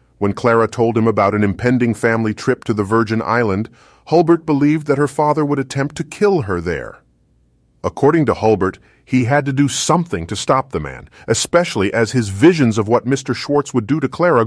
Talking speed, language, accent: 200 wpm, English, American